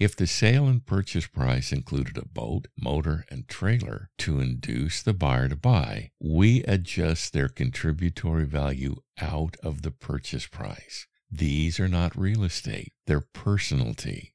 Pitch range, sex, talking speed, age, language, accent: 80-100 Hz, male, 145 wpm, 60-79, English, American